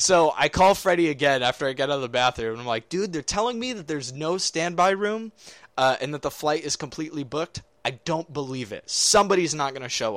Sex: male